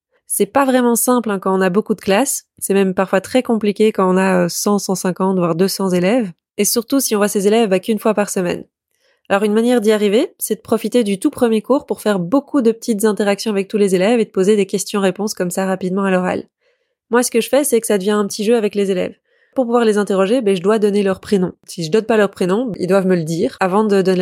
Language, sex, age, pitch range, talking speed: French, female, 20-39, 190-230 Hz, 265 wpm